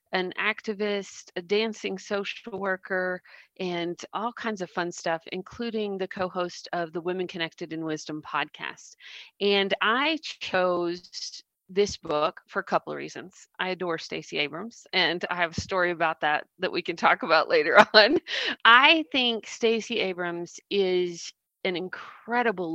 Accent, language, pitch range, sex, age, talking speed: American, English, 180-225 Hz, female, 40-59, 150 wpm